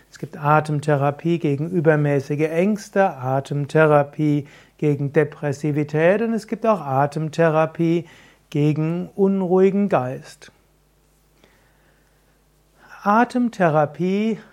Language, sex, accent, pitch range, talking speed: German, male, German, 145-180 Hz, 75 wpm